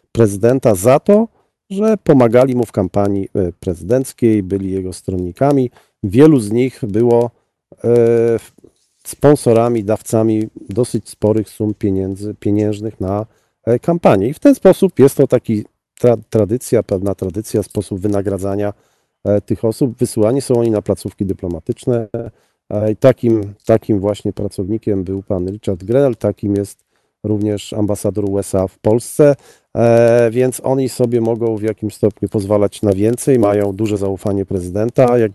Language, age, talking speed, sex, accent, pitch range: Polish, 40-59, 130 wpm, male, native, 100-120 Hz